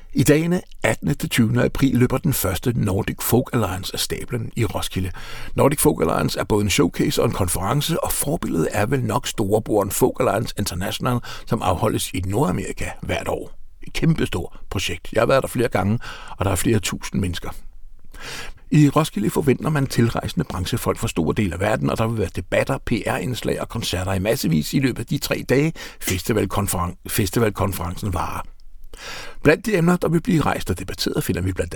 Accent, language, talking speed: native, Danish, 185 wpm